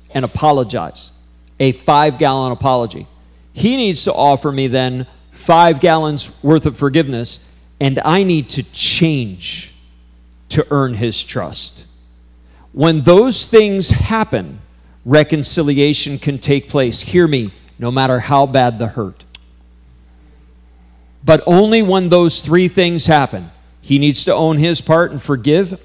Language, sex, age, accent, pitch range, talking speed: English, male, 50-69, American, 100-160 Hz, 130 wpm